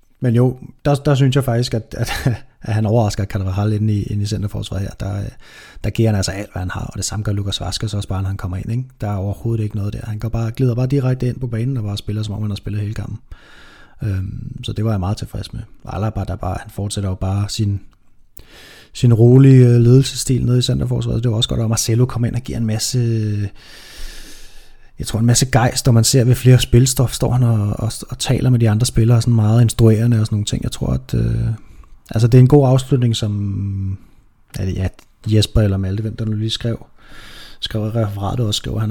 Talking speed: 245 wpm